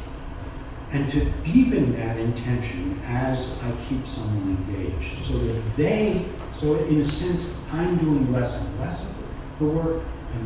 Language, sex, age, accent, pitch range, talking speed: English, male, 60-79, American, 100-130 Hz, 155 wpm